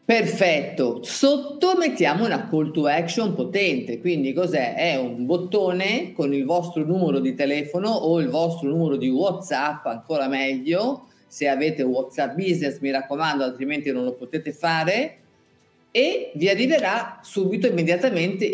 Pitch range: 135-200 Hz